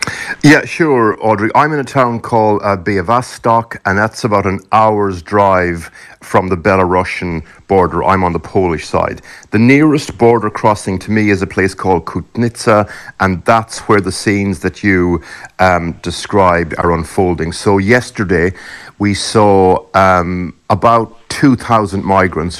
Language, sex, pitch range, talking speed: English, male, 90-110 Hz, 150 wpm